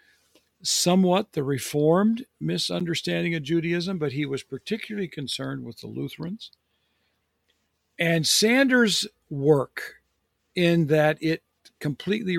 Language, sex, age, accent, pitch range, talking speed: English, male, 50-69, American, 130-170 Hz, 100 wpm